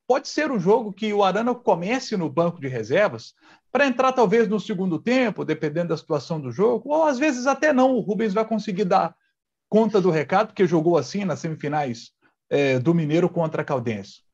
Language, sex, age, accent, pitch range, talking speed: Portuguese, male, 40-59, Brazilian, 155-225 Hz, 195 wpm